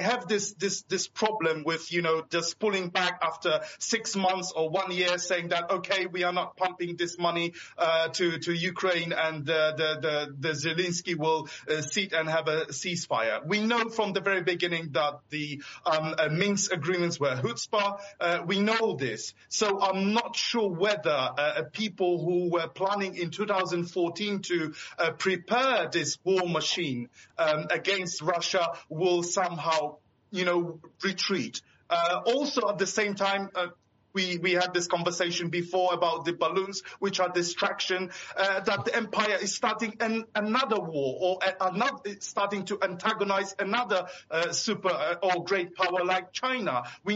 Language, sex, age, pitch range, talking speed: English, male, 30-49, 170-200 Hz, 165 wpm